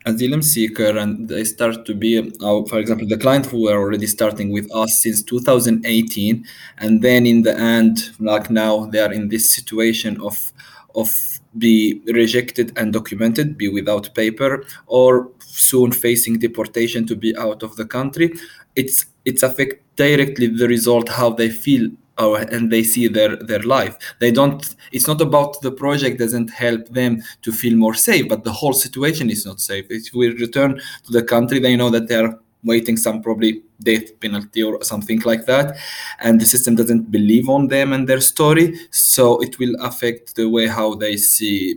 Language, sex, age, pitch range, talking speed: Finnish, male, 20-39, 110-125 Hz, 180 wpm